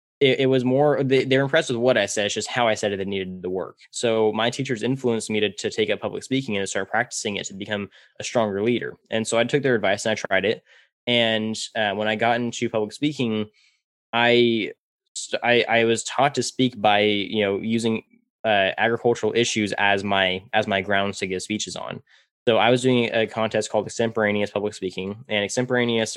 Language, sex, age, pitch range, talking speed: English, male, 10-29, 105-120 Hz, 220 wpm